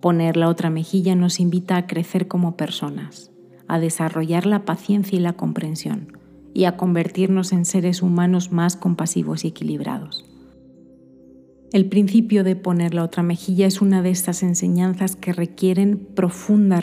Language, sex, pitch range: Spanish, female, 165-190 Hz